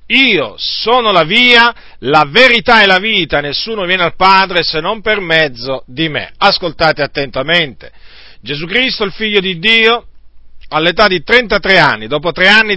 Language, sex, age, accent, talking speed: Italian, male, 50-69, native, 160 wpm